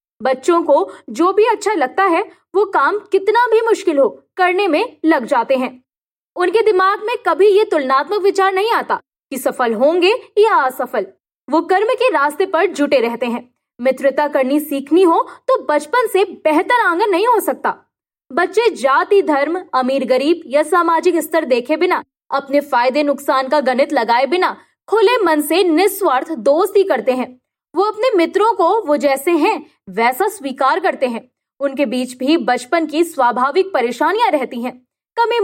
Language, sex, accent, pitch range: Hindi, female, native, 275-390 Hz